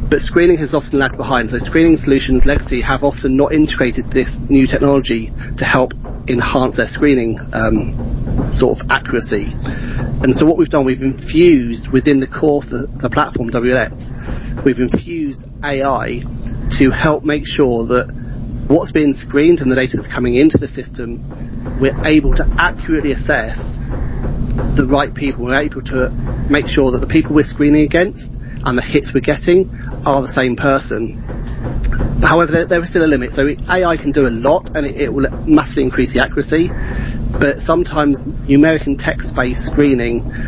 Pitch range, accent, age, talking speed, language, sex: 125-145 Hz, British, 30-49, 170 wpm, English, male